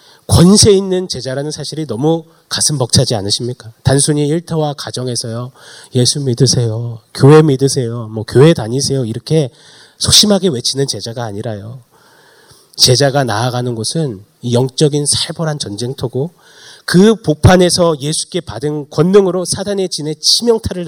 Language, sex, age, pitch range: Korean, male, 30-49, 115-155 Hz